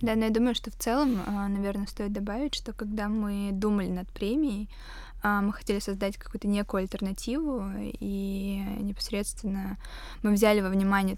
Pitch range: 195-210 Hz